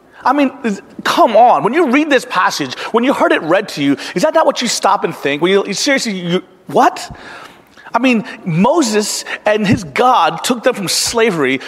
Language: English